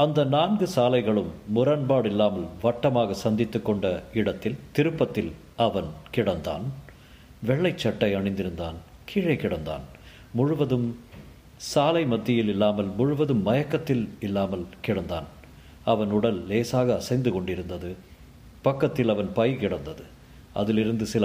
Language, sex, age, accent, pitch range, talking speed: Tamil, male, 50-69, native, 90-125 Hz, 100 wpm